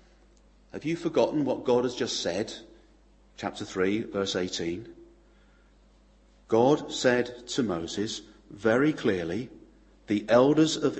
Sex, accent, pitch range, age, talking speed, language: male, British, 110-170 Hz, 40-59, 115 wpm, English